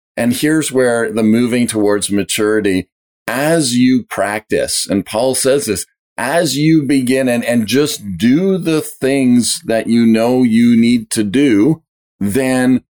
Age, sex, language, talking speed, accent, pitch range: 40-59, male, English, 145 wpm, American, 110-130 Hz